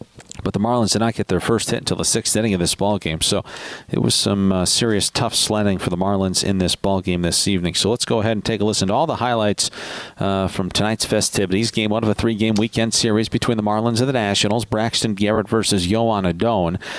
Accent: American